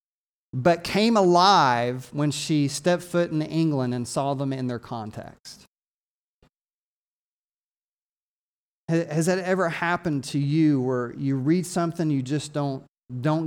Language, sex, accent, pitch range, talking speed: English, male, American, 140-180 Hz, 130 wpm